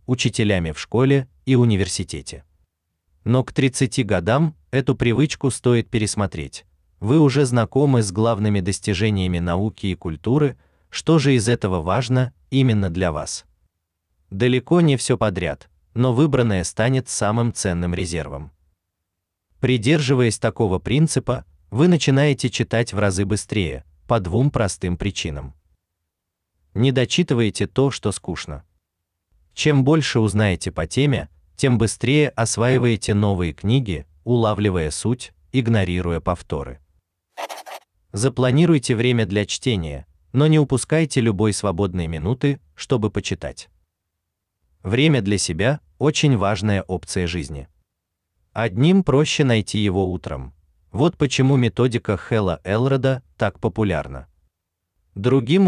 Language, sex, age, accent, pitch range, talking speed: Russian, male, 30-49, native, 85-130 Hz, 110 wpm